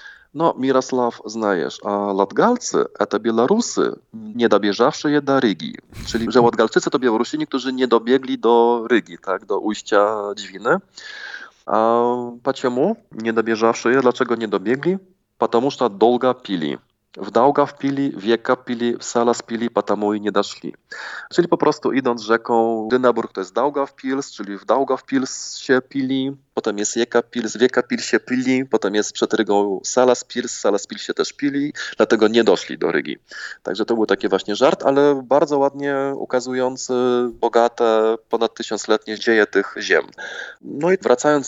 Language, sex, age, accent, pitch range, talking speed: Polish, male, 20-39, native, 110-135 Hz, 160 wpm